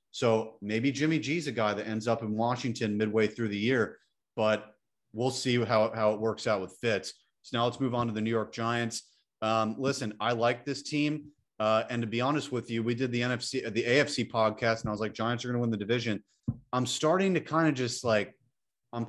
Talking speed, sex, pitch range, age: 235 wpm, male, 115-130 Hz, 30-49